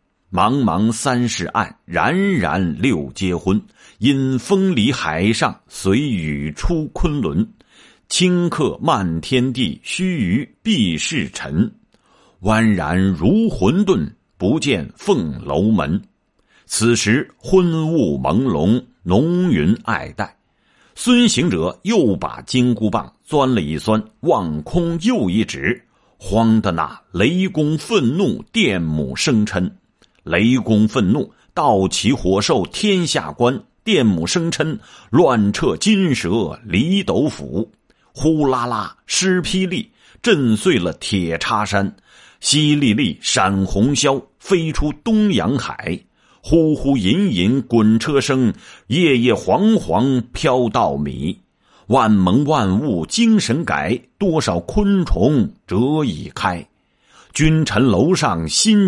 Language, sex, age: Chinese, male, 50-69